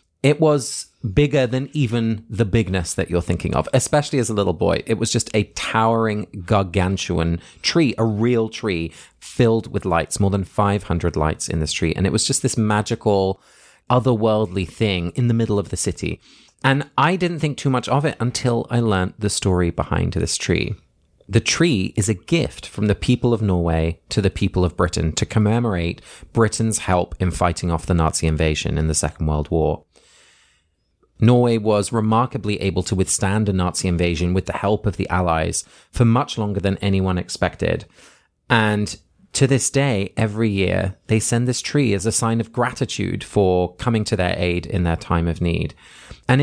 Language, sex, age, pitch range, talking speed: English, male, 30-49, 90-120 Hz, 185 wpm